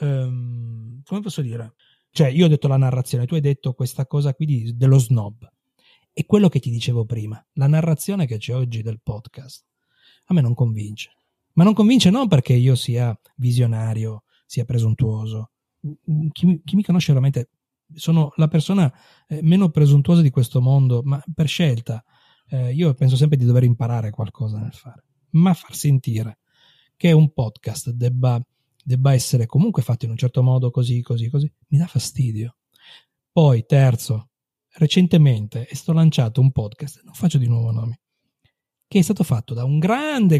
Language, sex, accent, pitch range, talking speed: Italian, male, native, 120-160 Hz, 165 wpm